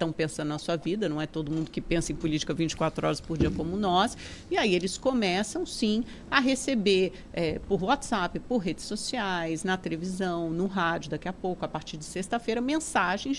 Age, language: 50-69, Portuguese